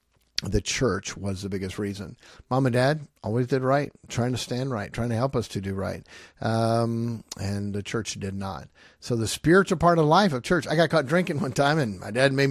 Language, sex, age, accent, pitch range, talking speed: Finnish, male, 50-69, American, 105-135 Hz, 225 wpm